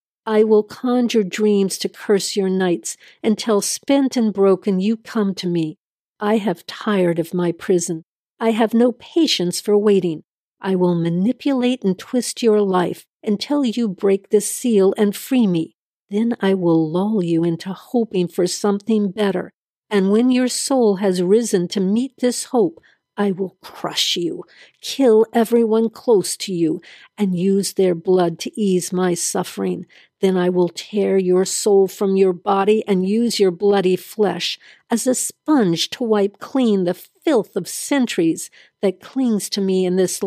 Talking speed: 165 wpm